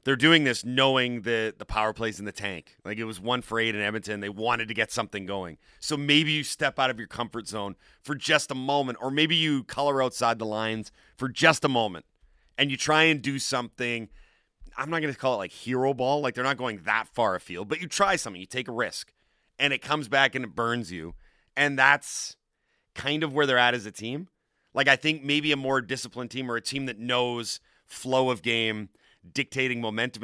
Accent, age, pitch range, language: American, 30-49, 110-140 Hz, English